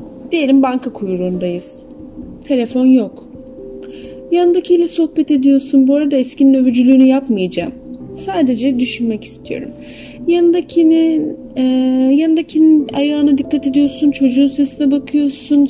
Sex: female